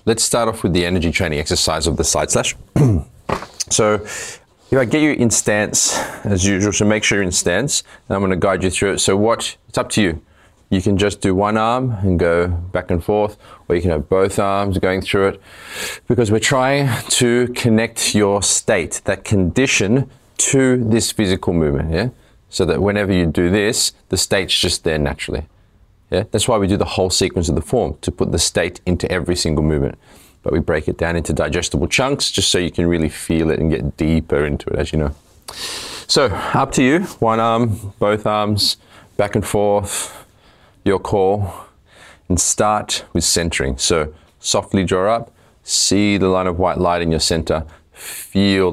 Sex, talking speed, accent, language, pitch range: male, 195 wpm, Australian, English, 85-105 Hz